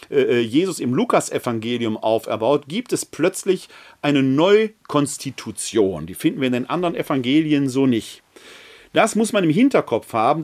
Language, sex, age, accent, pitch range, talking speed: German, male, 40-59, German, 140-210 Hz, 140 wpm